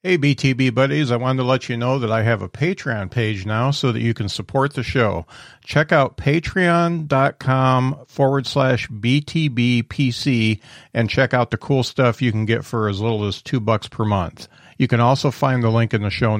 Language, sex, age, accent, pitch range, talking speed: English, male, 50-69, American, 115-145 Hz, 200 wpm